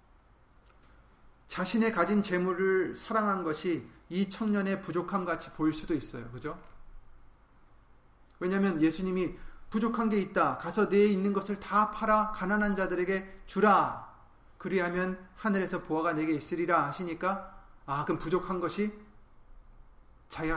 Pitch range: 155-210 Hz